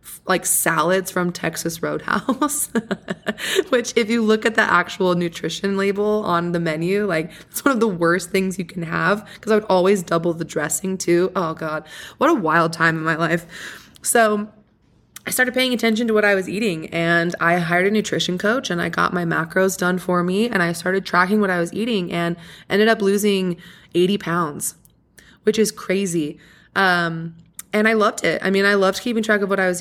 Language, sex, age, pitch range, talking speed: English, female, 20-39, 170-205 Hz, 200 wpm